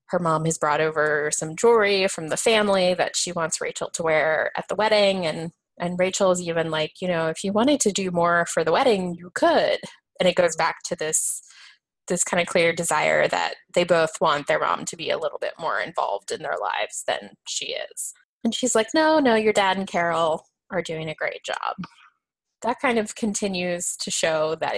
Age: 20-39